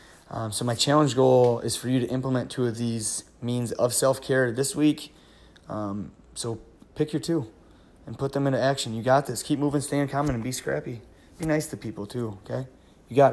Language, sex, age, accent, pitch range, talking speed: English, male, 20-39, American, 120-135 Hz, 210 wpm